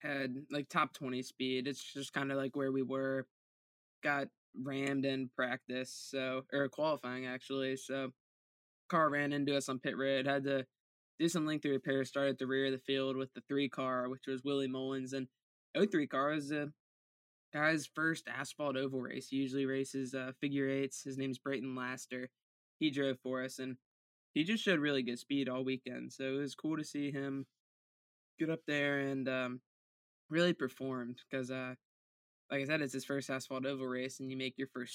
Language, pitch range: English, 130-140 Hz